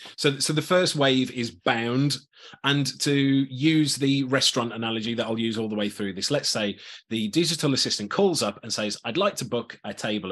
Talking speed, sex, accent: 210 wpm, male, British